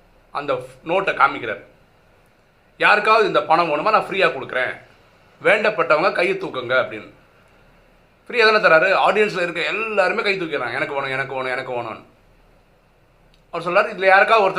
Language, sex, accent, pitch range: Tamil, male, native, 160-255 Hz